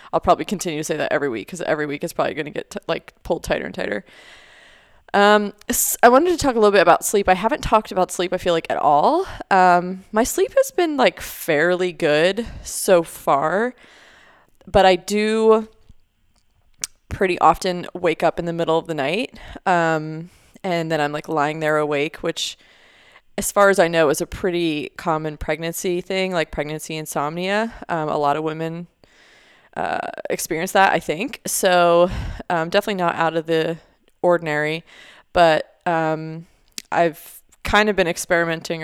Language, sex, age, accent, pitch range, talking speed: English, female, 20-39, American, 155-190 Hz, 175 wpm